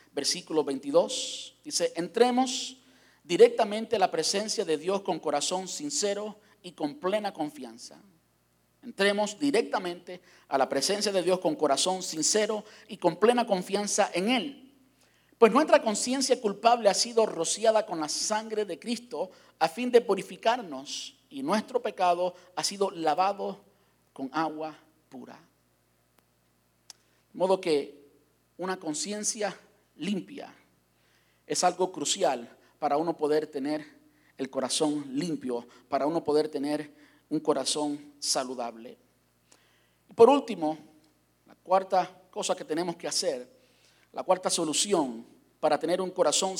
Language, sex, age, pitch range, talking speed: Spanish, male, 50-69, 145-210 Hz, 125 wpm